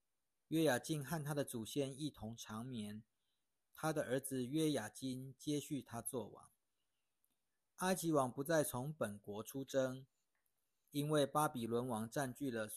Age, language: 50-69, Chinese